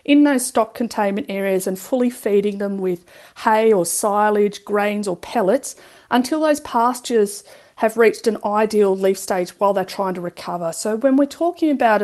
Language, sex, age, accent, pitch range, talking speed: English, female, 40-59, Australian, 195-250 Hz, 175 wpm